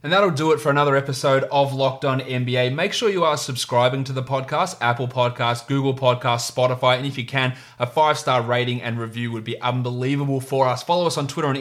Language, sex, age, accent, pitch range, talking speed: English, male, 20-39, Australian, 120-140 Hz, 225 wpm